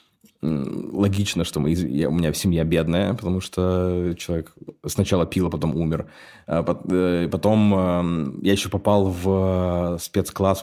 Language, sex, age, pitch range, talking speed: Russian, male, 20-39, 85-95 Hz, 115 wpm